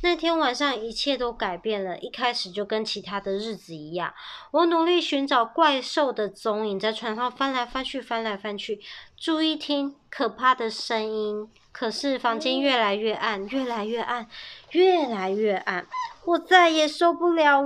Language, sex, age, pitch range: Chinese, male, 20-39, 225-325 Hz